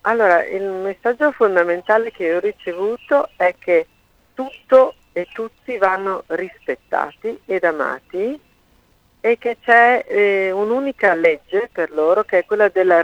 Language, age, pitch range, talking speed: Italian, 50-69, 175-265 Hz, 130 wpm